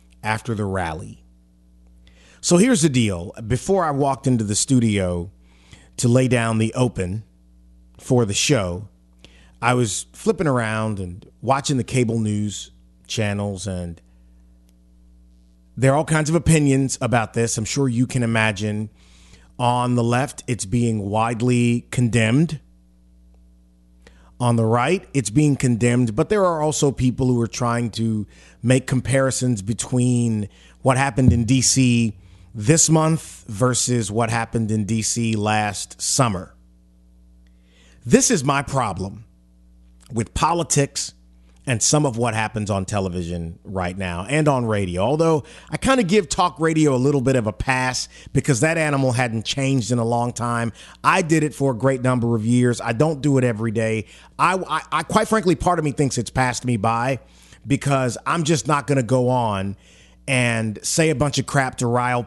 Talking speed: 160 wpm